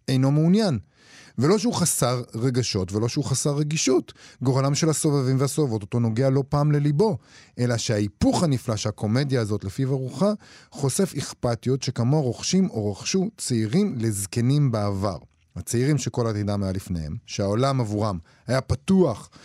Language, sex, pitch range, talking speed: Hebrew, male, 105-145 Hz, 135 wpm